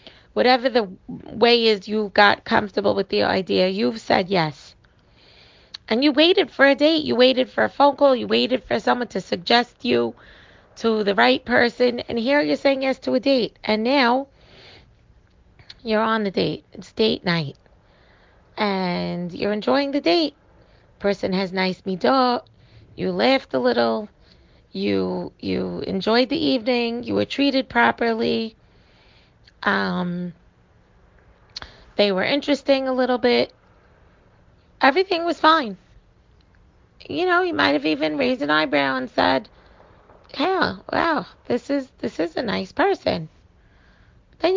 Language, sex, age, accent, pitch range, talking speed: English, female, 30-49, American, 175-260 Hz, 145 wpm